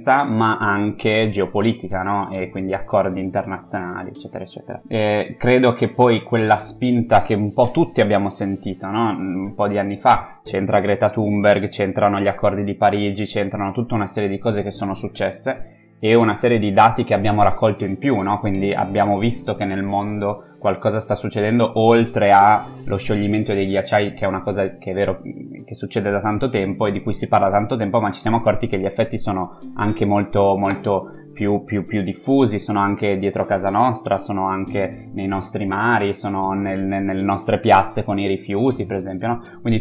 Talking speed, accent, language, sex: 190 wpm, native, Italian, male